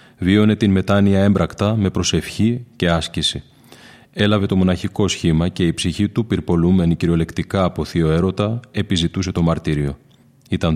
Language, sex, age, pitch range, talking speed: Greek, male, 30-49, 85-100 Hz, 140 wpm